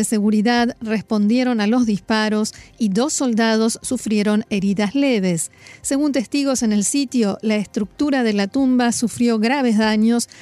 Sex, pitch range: female, 210-245 Hz